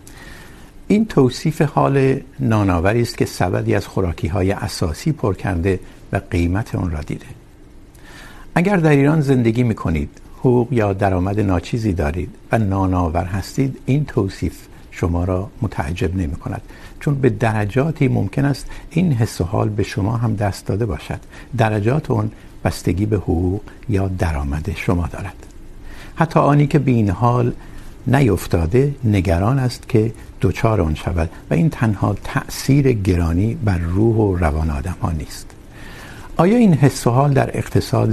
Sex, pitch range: male, 95-130 Hz